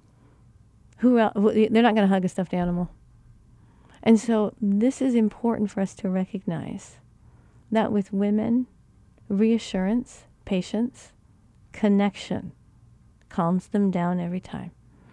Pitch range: 175-220 Hz